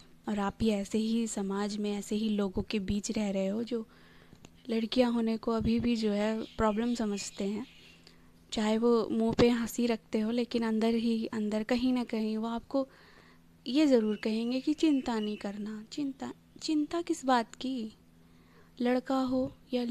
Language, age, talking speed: Hindi, 20-39, 170 wpm